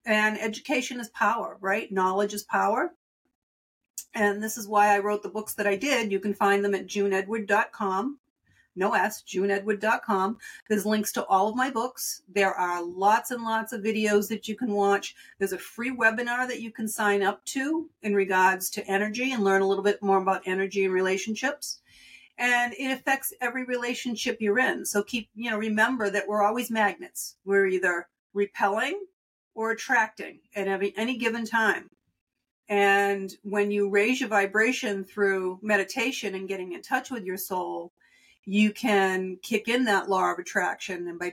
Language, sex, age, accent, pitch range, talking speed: English, female, 50-69, American, 195-235 Hz, 175 wpm